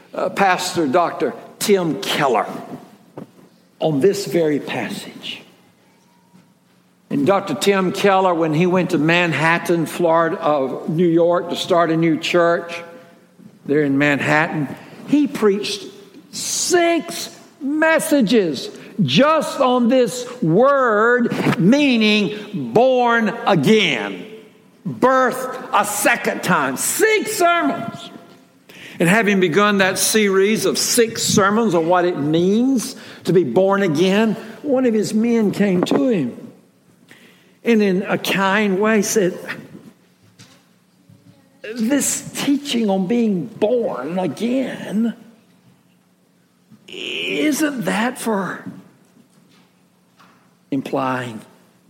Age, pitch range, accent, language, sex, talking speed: 60-79, 180-235 Hz, American, English, male, 100 wpm